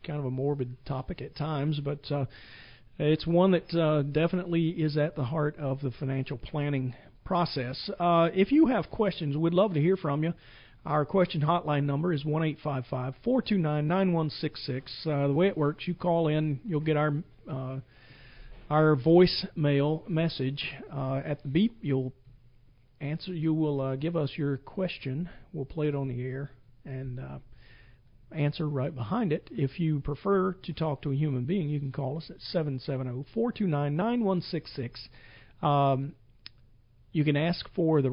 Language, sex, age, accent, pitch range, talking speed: English, male, 40-59, American, 130-170 Hz, 160 wpm